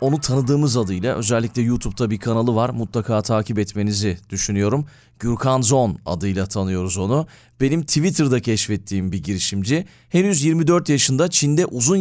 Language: Turkish